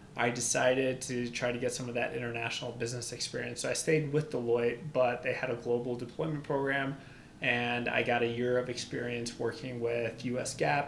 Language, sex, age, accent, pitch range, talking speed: English, male, 20-39, American, 120-130 Hz, 195 wpm